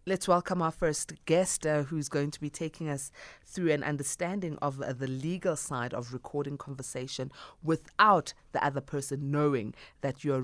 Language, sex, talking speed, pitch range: English, female, 170 wpm, 135-185 Hz